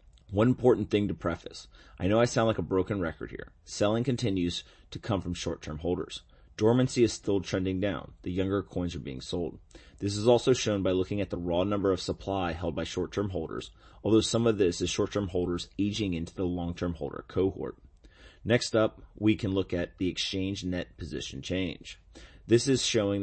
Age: 30-49